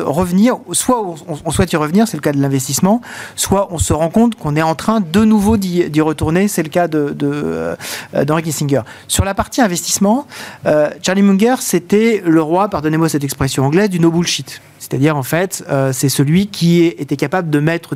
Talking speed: 195 wpm